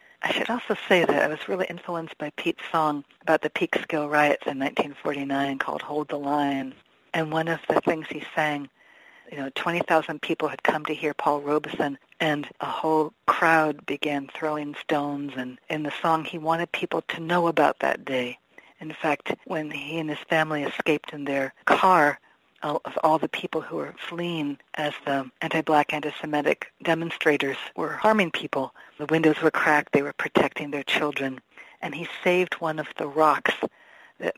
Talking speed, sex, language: 175 wpm, female, English